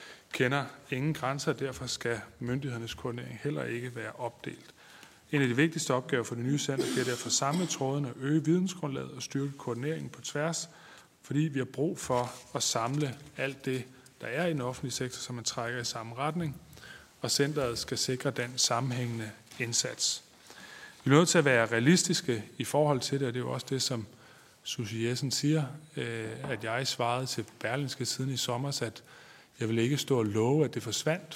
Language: Danish